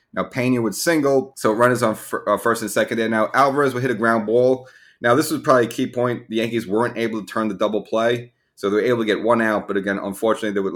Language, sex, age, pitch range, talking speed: English, male, 30-49, 100-115 Hz, 275 wpm